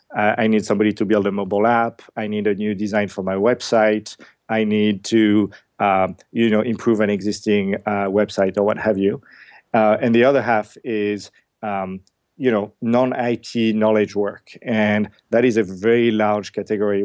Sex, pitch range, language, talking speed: male, 100-110 Hz, English, 180 wpm